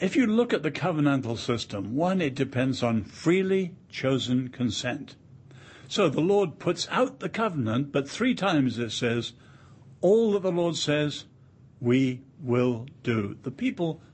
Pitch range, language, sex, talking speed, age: 125-150 Hz, English, male, 155 wpm, 60-79